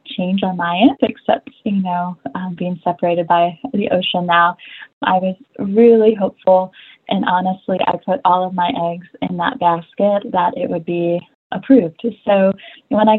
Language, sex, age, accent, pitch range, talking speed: English, female, 20-39, American, 180-220 Hz, 170 wpm